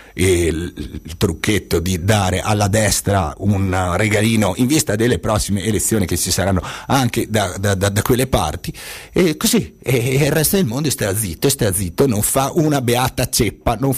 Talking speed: 175 wpm